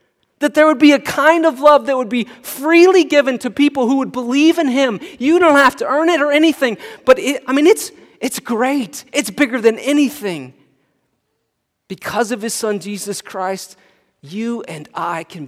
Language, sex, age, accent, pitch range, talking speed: English, male, 30-49, American, 165-250 Hz, 185 wpm